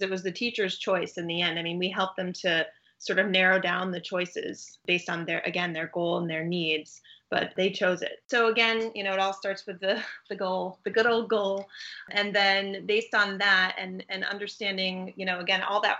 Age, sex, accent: 30-49, female, American